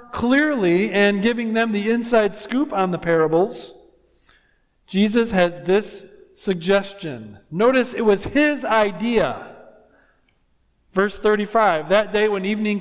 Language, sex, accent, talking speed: English, male, American, 115 wpm